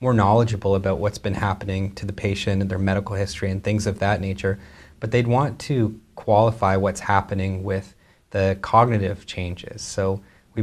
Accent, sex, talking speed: American, male, 175 wpm